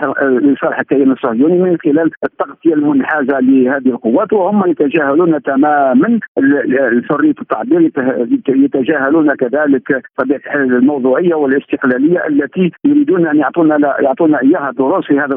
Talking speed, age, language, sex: 100 wpm, 50-69, Arabic, male